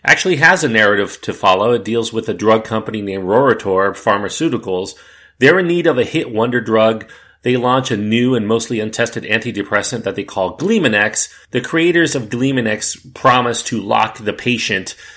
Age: 40-59